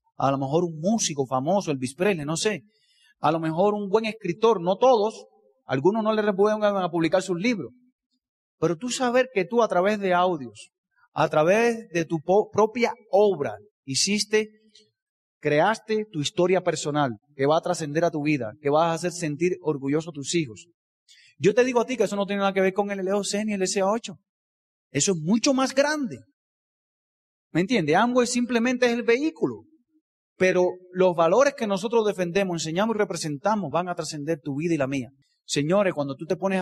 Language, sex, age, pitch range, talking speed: Spanish, male, 30-49, 145-205 Hz, 190 wpm